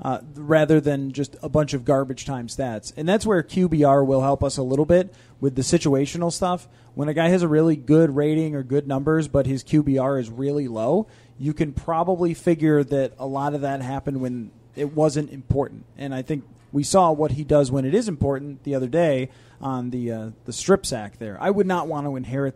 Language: English